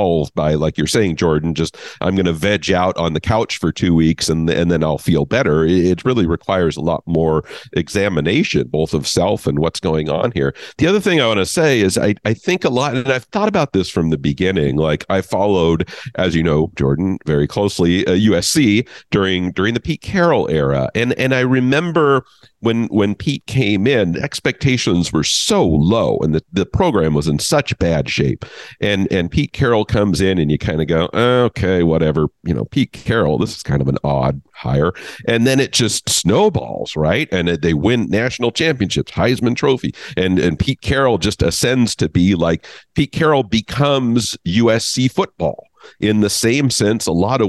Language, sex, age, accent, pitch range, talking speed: English, male, 50-69, American, 85-120 Hz, 200 wpm